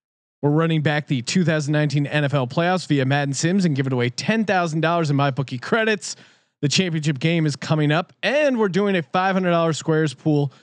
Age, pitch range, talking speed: 30-49, 135-170 Hz, 175 wpm